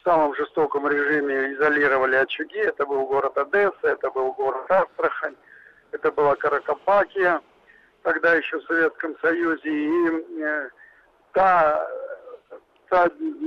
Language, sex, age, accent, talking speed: Russian, male, 60-79, native, 110 wpm